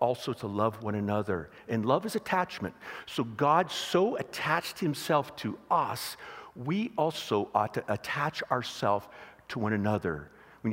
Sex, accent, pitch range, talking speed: male, American, 110-150 Hz, 145 wpm